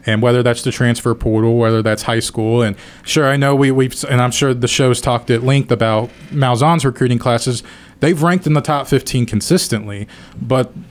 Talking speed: 205 wpm